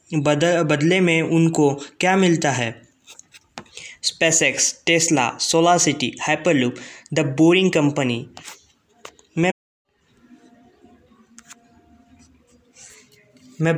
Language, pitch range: Hindi, 150-180 Hz